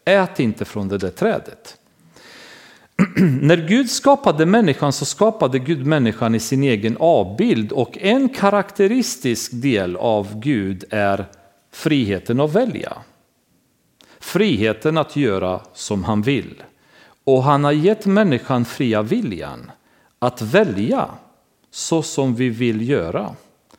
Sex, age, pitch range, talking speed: male, 40-59, 110-165 Hz, 120 wpm